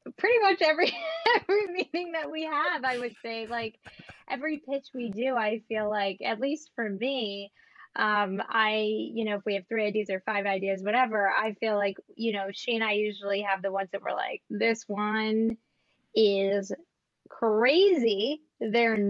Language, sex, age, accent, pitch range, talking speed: English, female, 10-29, American, 210-260 Hz, 175 wpm